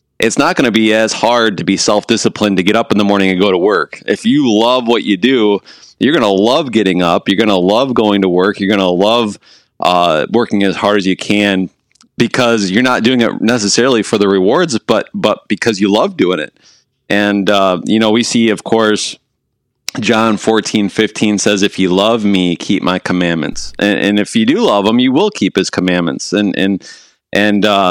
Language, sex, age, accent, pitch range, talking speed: English, male, 30-49, American, 95-110 Hz, 215 wpm